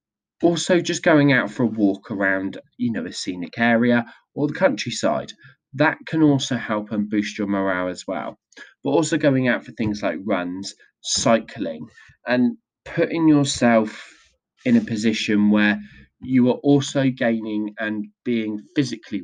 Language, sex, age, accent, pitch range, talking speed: English, male, 20-39, British, 105-145 Hz, 155 wpm